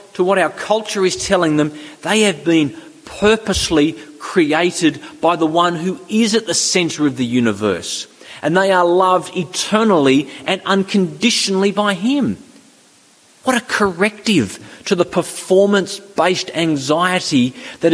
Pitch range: 140-185 Hz